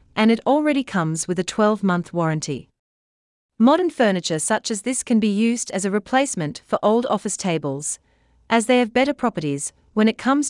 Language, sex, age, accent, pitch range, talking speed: English, female, 40-59, Australian, 160-235 Hz, 175 wpm